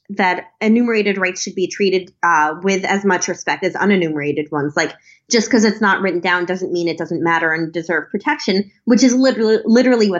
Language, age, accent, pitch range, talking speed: English, 20-39, American, 170-210 Hz, 200 wpm